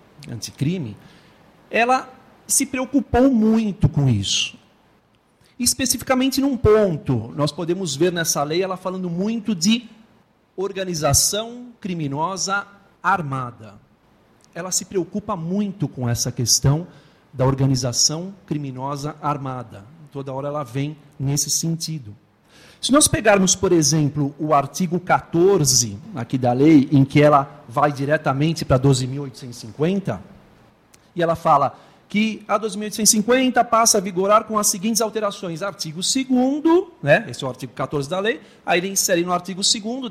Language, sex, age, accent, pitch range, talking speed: Portuguese, male, 50-69, Brazilian, 145-215 Hz, 130 wpm